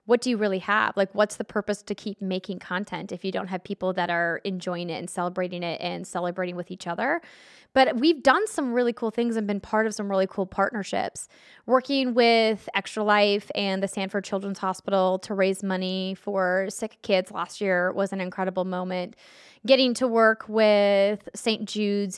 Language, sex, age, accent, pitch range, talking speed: English, female, 10-29, American, 185-220 Hz, 195 wpm